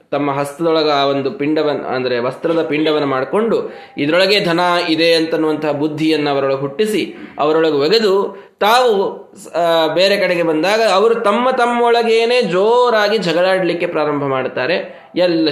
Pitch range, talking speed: 150-210 Hz, 115 wpm